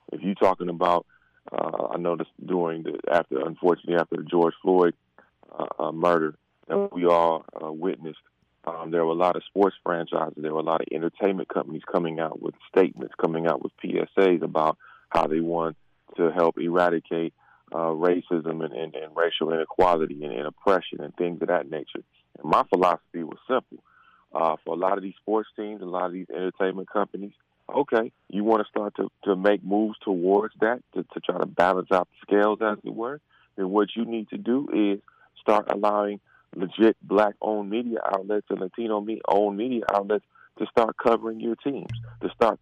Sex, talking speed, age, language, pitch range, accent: male, 185 wpm, 30-49, English, 85-105 Hz, American